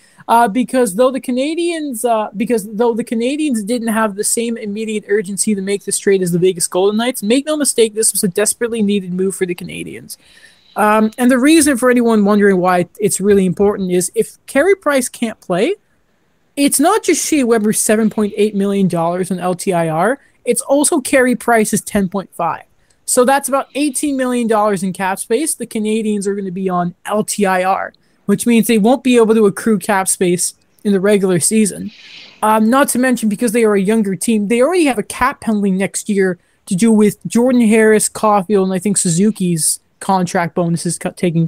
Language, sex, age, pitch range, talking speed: English, male, 20-39, 190-245 Hz, 190 wpm